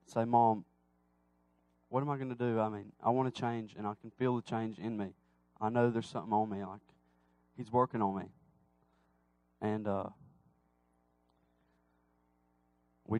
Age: 20-39